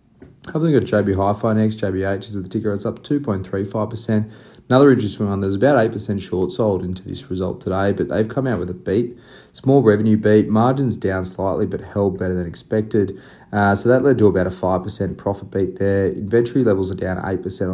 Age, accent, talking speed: 20-39, Australian, 205 wpm